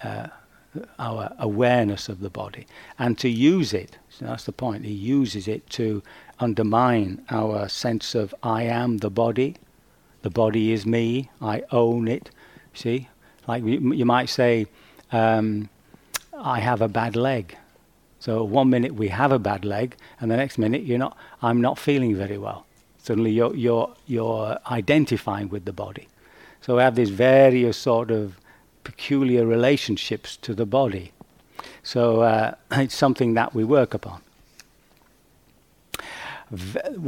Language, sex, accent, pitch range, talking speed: English, male, British, 110-130 Hz, 145 wpm